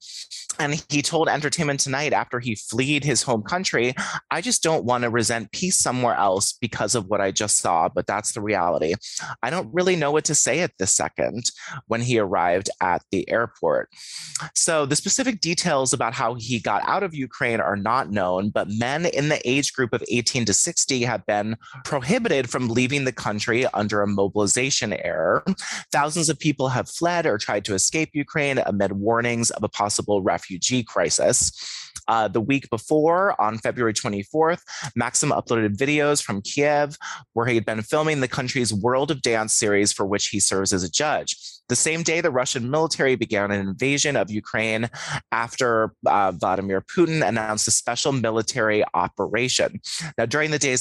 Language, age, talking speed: English, 30-49, 180 wpm